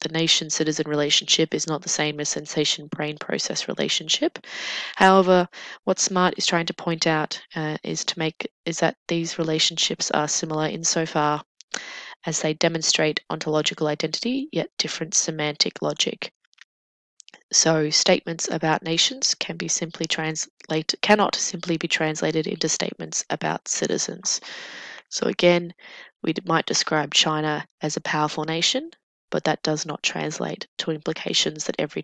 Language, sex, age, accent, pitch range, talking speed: English, female, 20-39, Australian, 155-185 Hz, 125 wpm